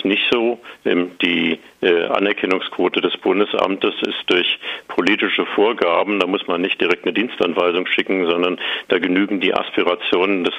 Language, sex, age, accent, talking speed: German, male, 50-69, German, 140 wpm